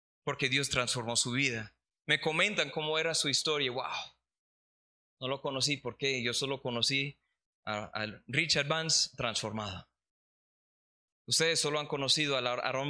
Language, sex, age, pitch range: Spanish, male, 20-39, 125-150 Hz